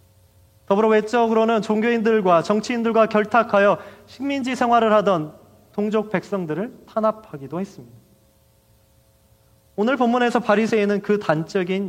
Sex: male